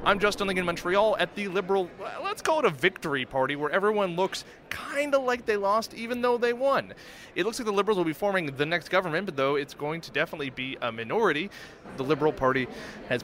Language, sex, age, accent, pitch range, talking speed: English, male, 20-39, American, 145-185 Hz, 220 wpm